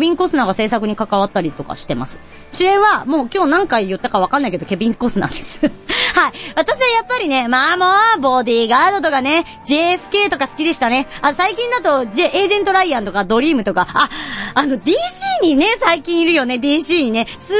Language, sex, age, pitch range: Japanese, male, 40-59, 240-395 Hz